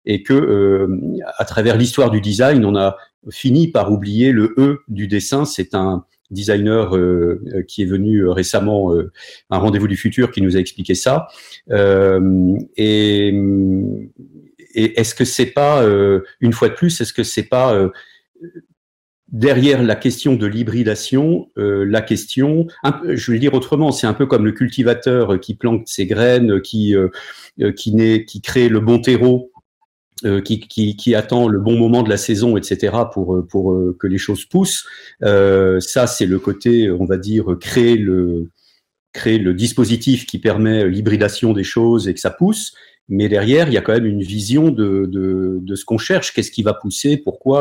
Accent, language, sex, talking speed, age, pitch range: French, French, male, 185 wpm, 50-69, 100-130 Hz